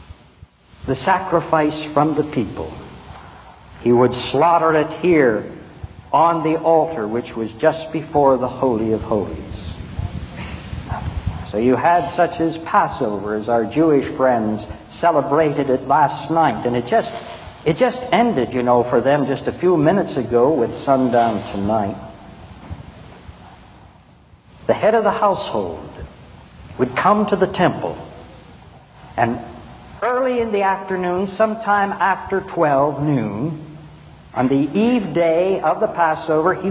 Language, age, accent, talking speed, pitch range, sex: English, 60-79, American, 130 wpm, 120-180 Hz, male